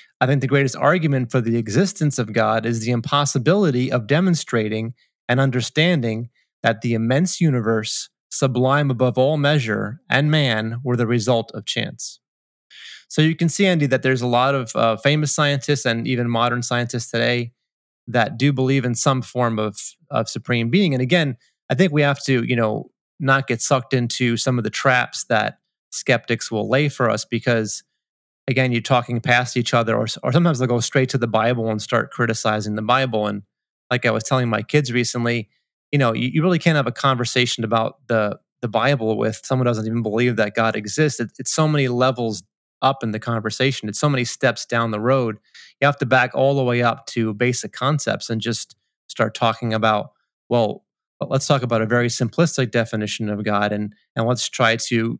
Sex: male